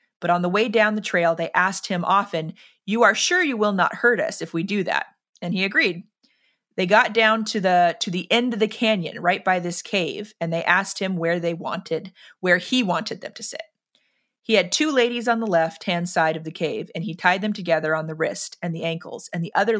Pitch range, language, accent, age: 170-220 Hz, English, American, 30-49